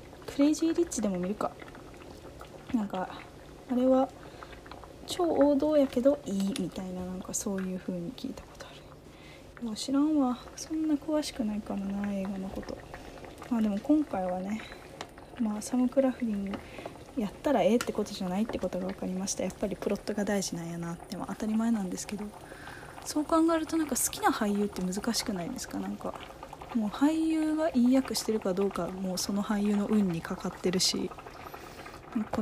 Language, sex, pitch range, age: Japanese, female, 195-250 Hz, 20-39